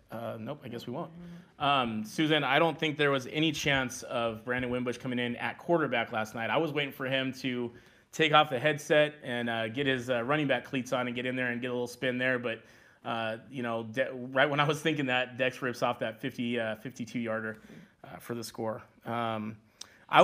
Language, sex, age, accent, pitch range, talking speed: English, male, 20-39, American, 115-140 Hz, 220 wpm